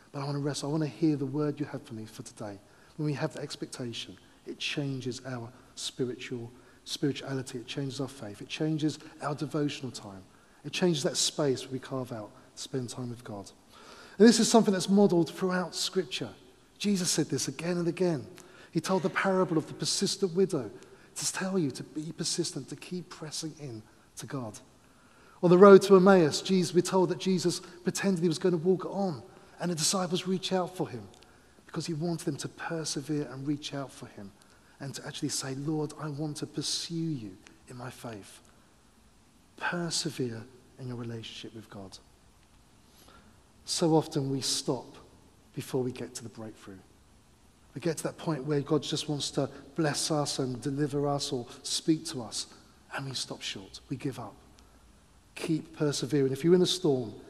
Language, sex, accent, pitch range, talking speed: English, male, British, 130-170 Hz, 185 wpm